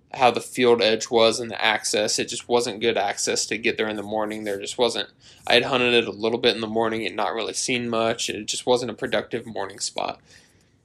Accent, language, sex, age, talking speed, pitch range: American, English, male, 10-29, 245 wpm, 115-135 Hz